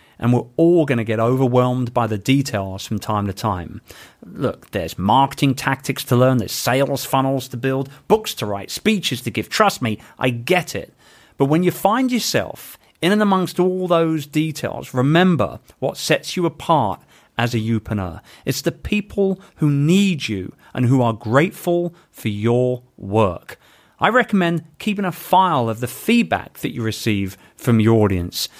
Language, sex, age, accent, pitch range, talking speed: English, male, 40-59, British, 110-170 Hz, 170 wpm